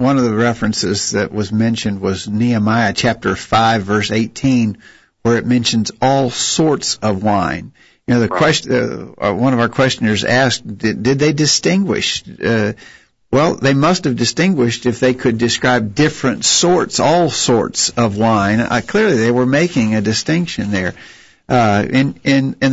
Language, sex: English, male